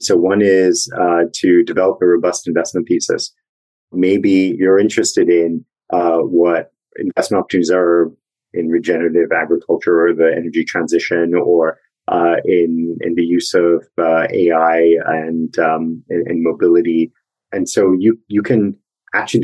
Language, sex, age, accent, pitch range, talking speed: English, male, 30-49, American, 85-100 Hz, 140 wpm